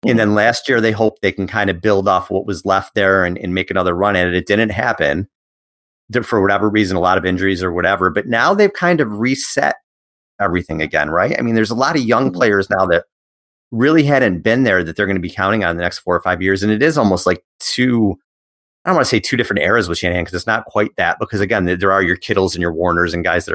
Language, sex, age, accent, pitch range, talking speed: English, male, 30-49, American, 90-110 Hz, 265 wpm